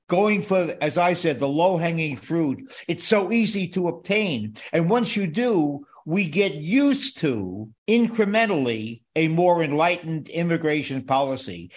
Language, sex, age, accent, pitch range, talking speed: English, male, 50-69, American, 150-195 Hz, 140 wpm